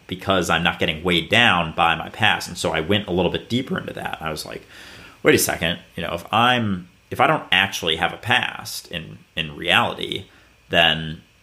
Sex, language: male, English